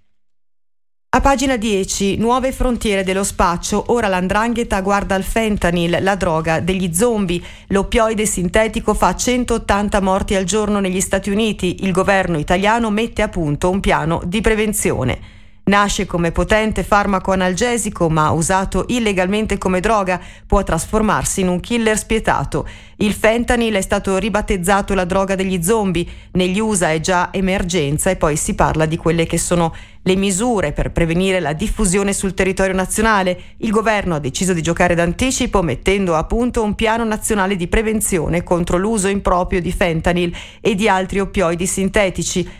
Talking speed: 150 wpm